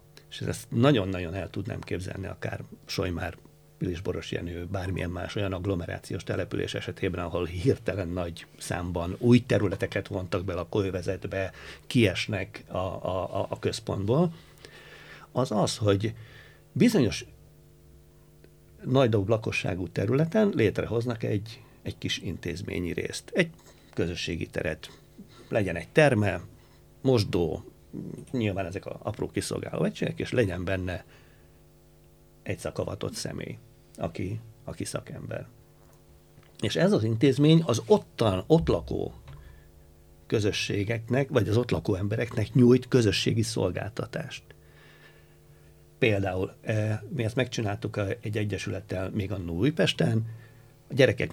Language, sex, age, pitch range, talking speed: Hungarian, male, 60-79, 95-120 Hz, 105 wpm